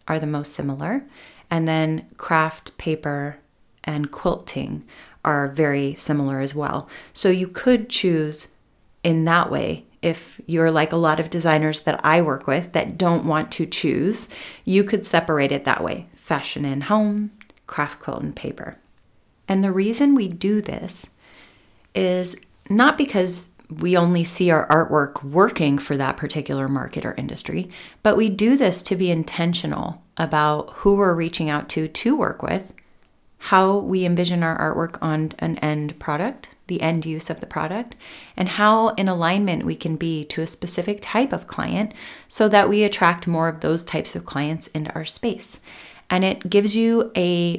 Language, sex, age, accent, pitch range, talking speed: English, female, 30-49, American, 155-195 Hz, 170 wpm